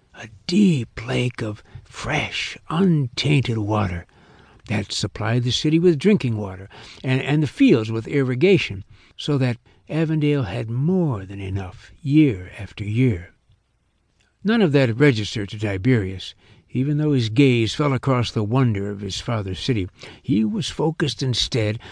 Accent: American